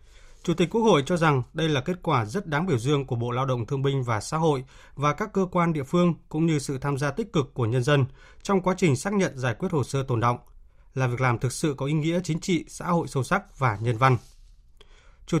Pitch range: 130-170 Hz